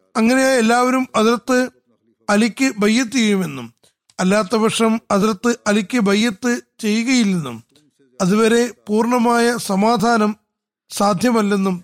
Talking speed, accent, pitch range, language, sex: 70 wpm, native, 195-240 Hz, Malayalam, male